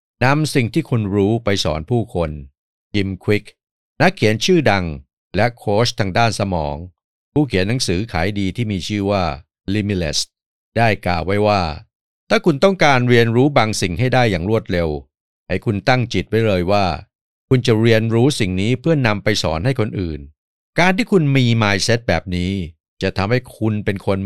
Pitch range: 90-120 Hz